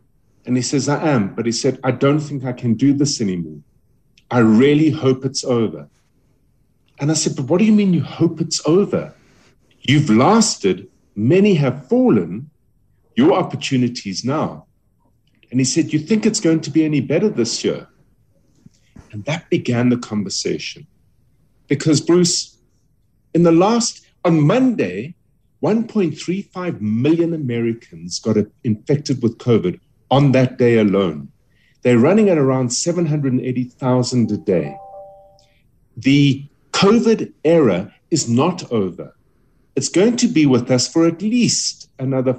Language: English